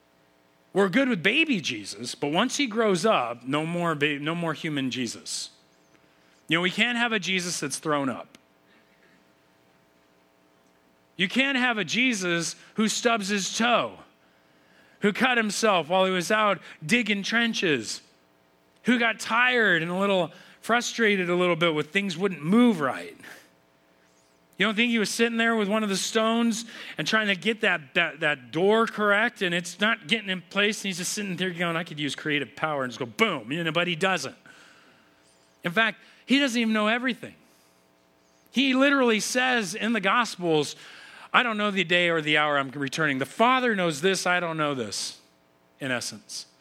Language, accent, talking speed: English, American, 180 wpm